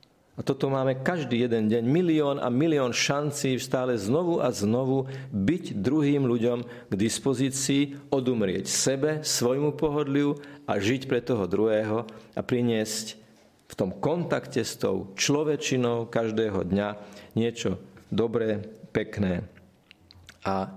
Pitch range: 100-125 Hz